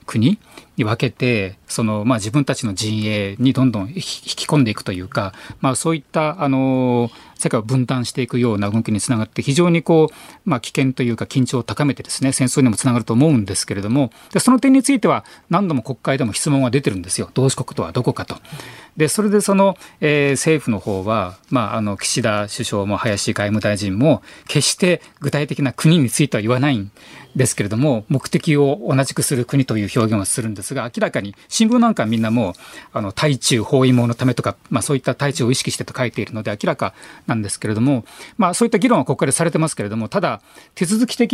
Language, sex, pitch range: Japanese, male, 110-155 Hz